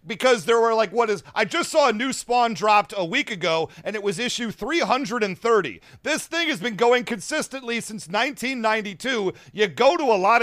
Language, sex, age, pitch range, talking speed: English, male, 40-59, 200-245 Hz, 195 wpm